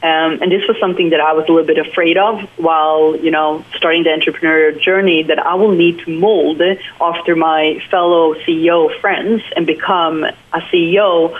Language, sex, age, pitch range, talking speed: English, female, 30-49, 160-185 Hz, 185 wpm